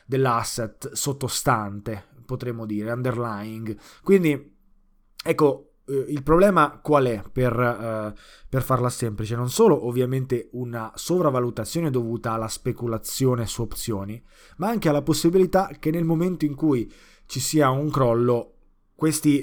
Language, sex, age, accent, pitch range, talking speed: Italian, male, 20-39, native, 115-140 Hz, 125 wpm